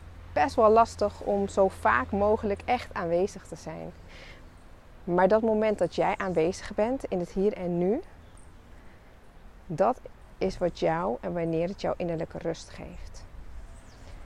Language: English